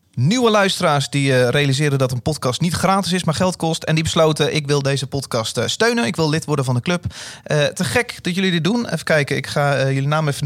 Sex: male